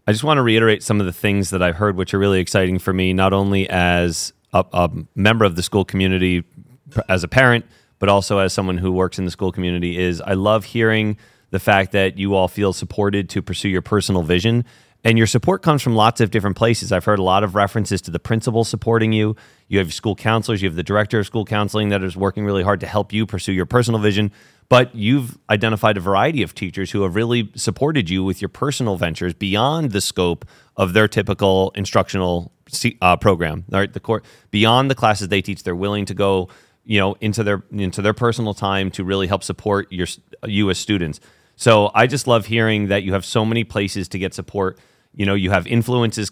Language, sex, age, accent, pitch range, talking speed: English, male, 30-49, American, 95-110 Hz, 220 wpm